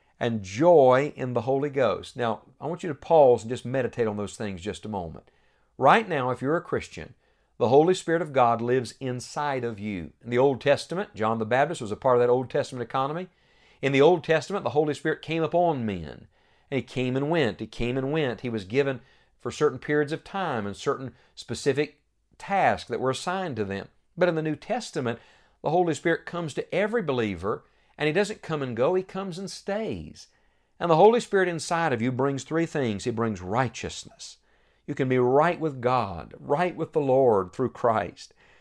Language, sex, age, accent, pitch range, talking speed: English, male, 50-69, American, 115-170 Hz, 205 wpm